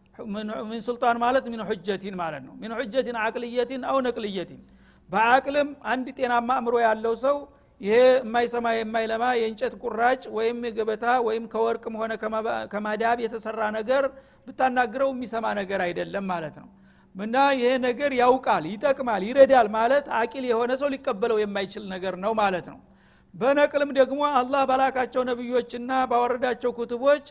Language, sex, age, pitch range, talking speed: Amharic, male, 60-79, 220-260 Hz, 100 wpm